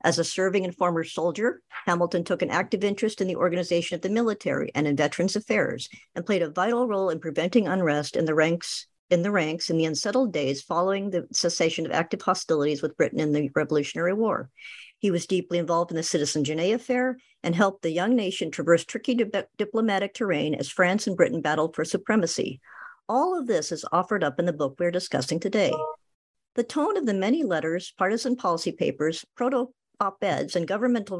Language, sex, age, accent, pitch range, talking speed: English, male, 50-69, American, 165-220 Hz, 195 wpm